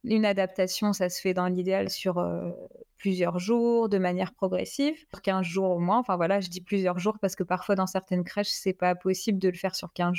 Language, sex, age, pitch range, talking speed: French, female, 20-39, 190-235 Hz, 230 wpm